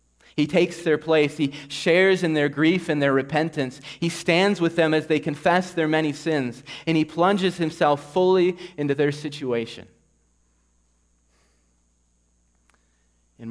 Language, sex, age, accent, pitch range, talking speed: English, male, 30-49, American, 110-160 Hz, 140 wpm